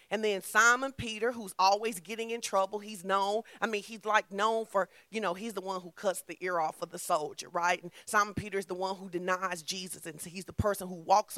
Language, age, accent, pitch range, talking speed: English, 40-59, American, 200-265 Hz, 245 wpm